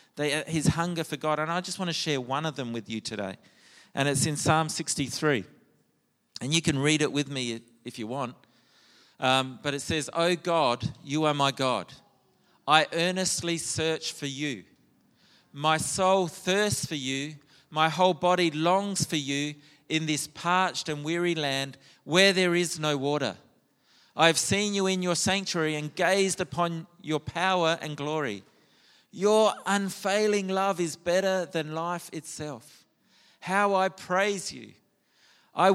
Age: 40-59